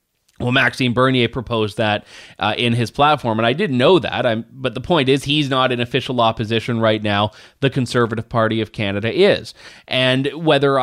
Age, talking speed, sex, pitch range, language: 30-49, 185 wpm, male, 120-160 Hz, English